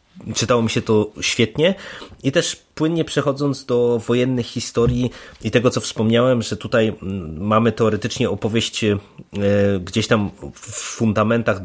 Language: Polish